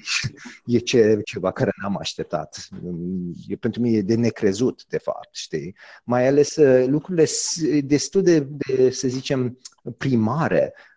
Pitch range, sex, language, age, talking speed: 115-145 Hz, male, Romanian, 30-49, 125 wpm